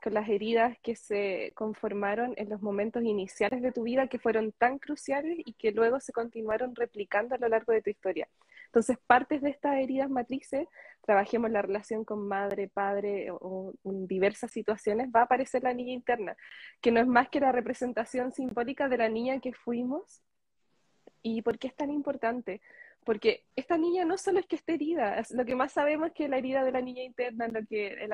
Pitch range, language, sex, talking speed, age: 220-265 Hz, Spanish, female, 200 wpm, 20-39